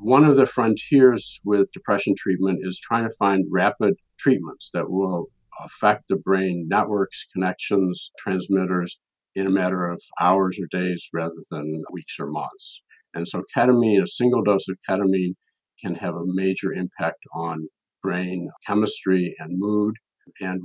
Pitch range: 90-105 Hz